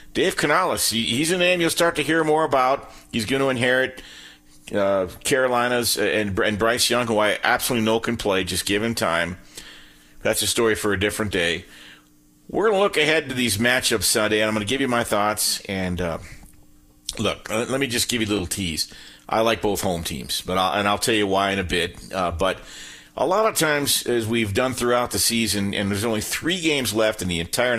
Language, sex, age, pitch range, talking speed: English, male, 50-69, 95-125 Hz, 220 wpm